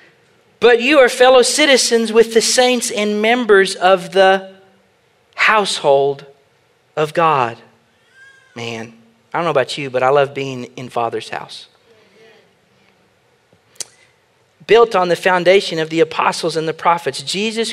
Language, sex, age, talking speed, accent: English, male, 40-59, 130 wpm, American